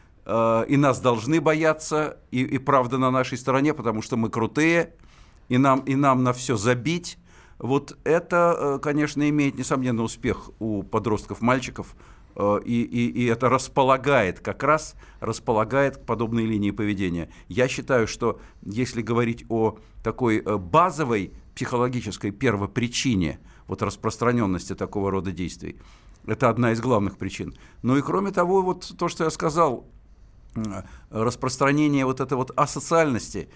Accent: native